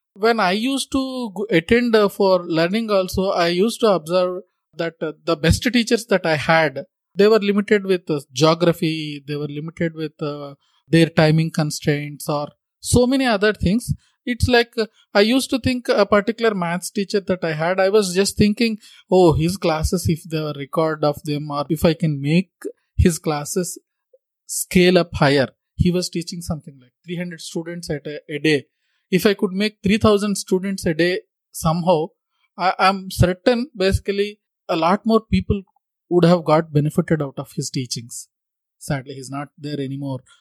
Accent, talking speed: Indian, 170 wpm